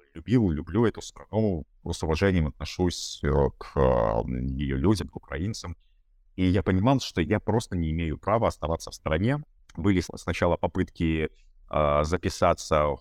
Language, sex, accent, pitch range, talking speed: Russian, male, native, 80-100 Hz, 135 wpm